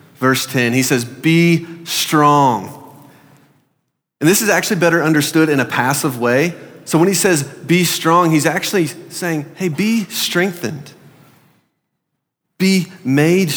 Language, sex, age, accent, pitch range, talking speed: English, male, 30-49, American, 125-160 Hz, 135 wpm